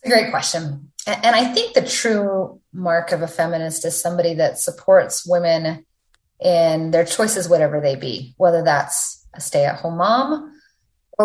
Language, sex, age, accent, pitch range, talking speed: English, female, 30-49, American, 155-205 Hz, 150 wpm